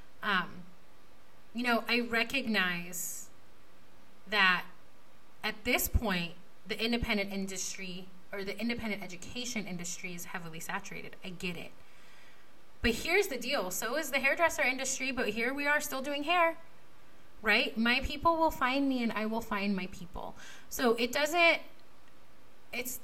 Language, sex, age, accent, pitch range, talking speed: English, female, 30-49, American, 195-240 Hz, 145 wpm